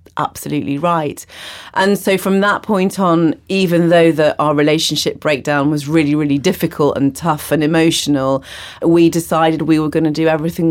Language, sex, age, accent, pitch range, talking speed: English, female, 30-49, British, 150-175 Hz, 170 wpm